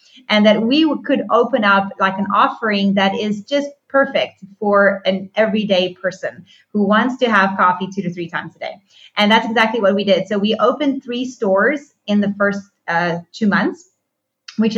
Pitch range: 185-220 Hz